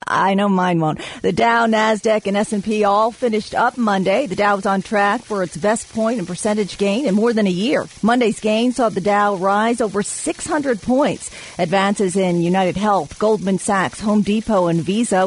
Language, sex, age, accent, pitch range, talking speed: English, female, 40-59, American, 190-225 Hz, 200 wpm